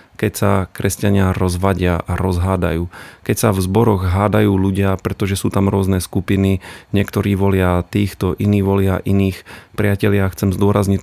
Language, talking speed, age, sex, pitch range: Slovak, 140 wpm, 30-49, male, 95-105 Hz